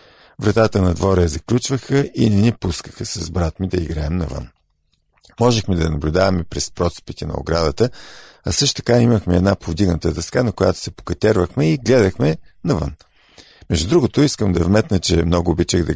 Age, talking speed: 50-69, 170 wpm